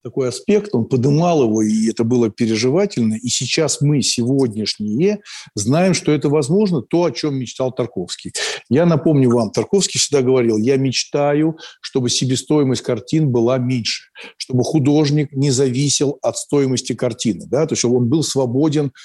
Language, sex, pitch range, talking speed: Russian, male, 120-150 Hz, 155 wpm